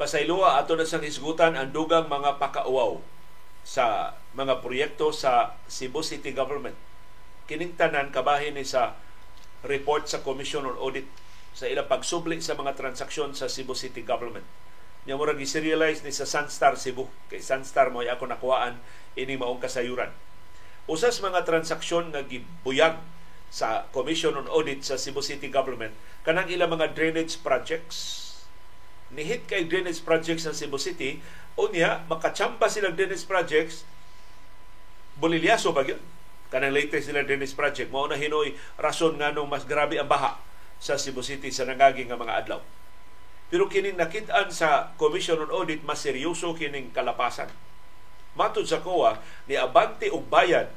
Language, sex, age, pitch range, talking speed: Filipino, male, 50-69, 135-165 Hz, 140 wpm